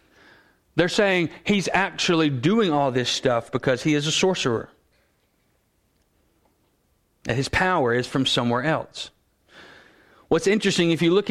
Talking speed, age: 135 wpm, 40-59